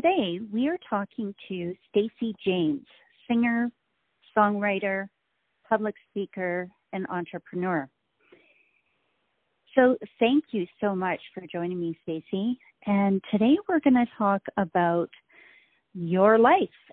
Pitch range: 175-215 Hz